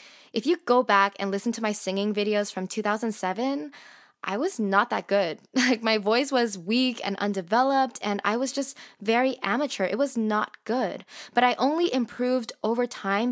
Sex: female